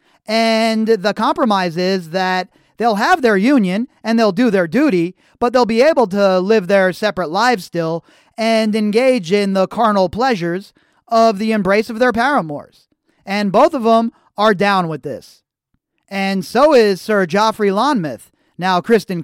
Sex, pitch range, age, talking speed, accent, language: male, 185-235 Hz, 30-49, 160 wpm, American, English